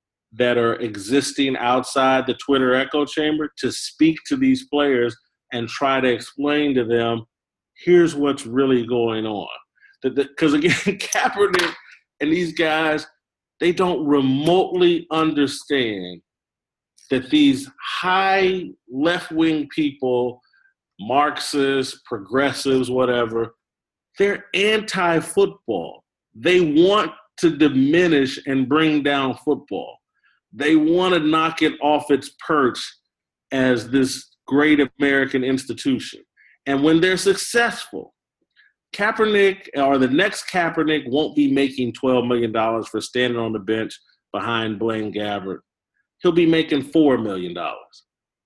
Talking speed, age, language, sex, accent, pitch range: 115 wpm, 40-59, English, male, American, 125-170 Hz